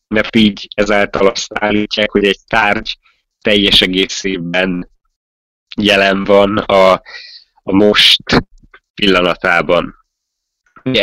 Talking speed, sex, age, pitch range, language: 95 wpm, male, 20-39, 95-110 Hz, Hungarian